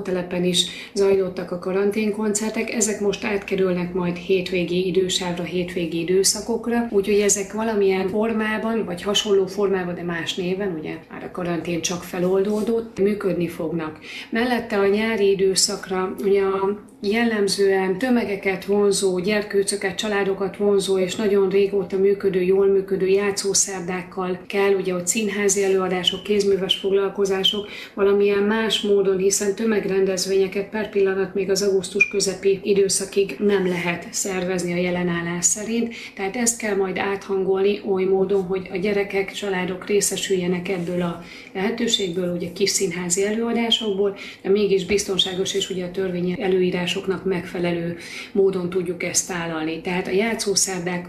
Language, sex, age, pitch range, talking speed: Hungarian, female, 30-49, 185-205 Hz, 130 wpm